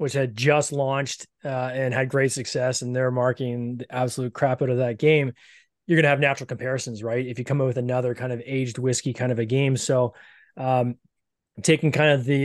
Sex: male